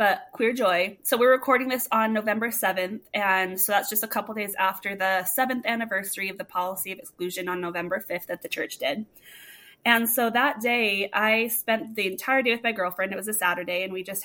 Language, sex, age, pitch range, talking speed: English, female, 20-39, 190-230 Hz, 220 wpm